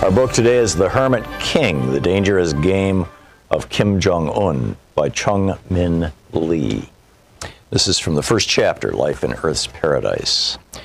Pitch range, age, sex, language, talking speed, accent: 85-115 Hz, 60-79, male, English, 150 wpm, American